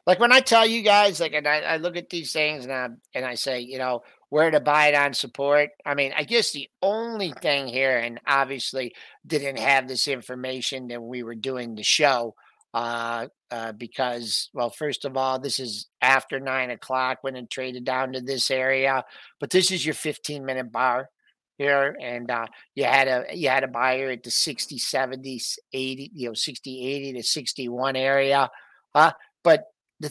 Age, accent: 50-69, American